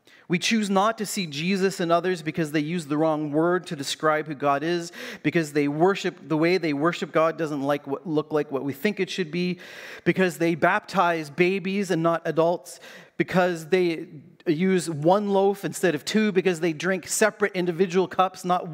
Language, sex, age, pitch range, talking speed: English, male, 30-49, 155-190 Hz, 185 wpm